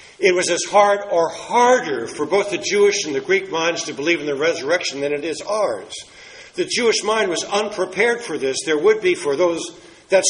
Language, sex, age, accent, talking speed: English, male, 60-79, American, 210 wpm